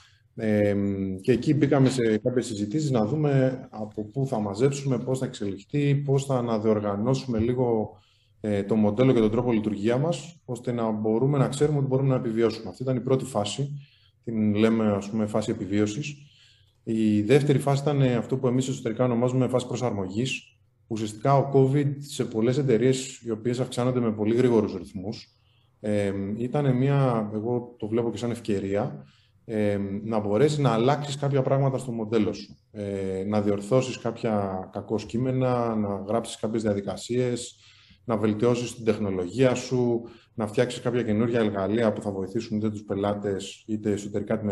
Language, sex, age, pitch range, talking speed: Greek, male, 20-39, 105-130 Hz, 160 wpm